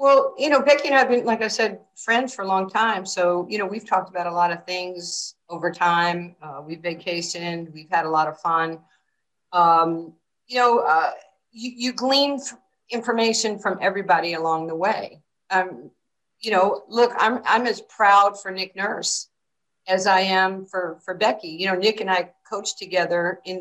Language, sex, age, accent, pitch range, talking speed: English, female, 50-69, American, 165-195 Hz, 190 wpm